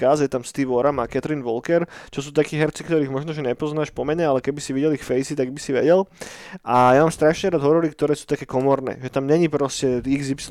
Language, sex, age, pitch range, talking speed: Slovak, male, 20-39, 130-155 Hz, 240 wpm